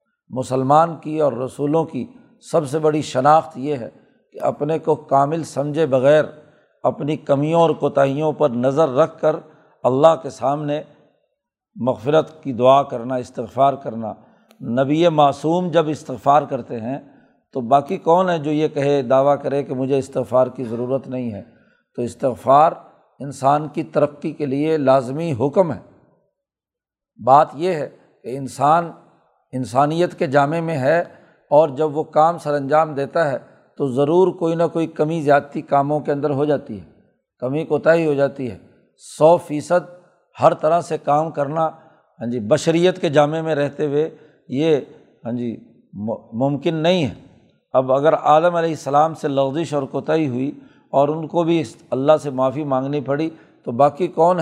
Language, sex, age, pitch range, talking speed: Urdu, male, 50-69, 135-160 Hz, 160 wpm